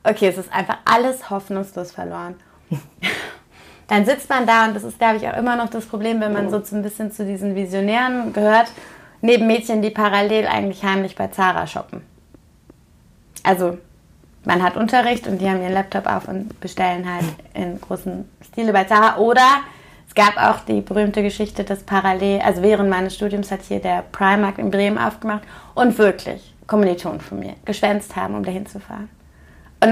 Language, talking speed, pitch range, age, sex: German, 175 wpm, 195-225 Hz, 30-49, female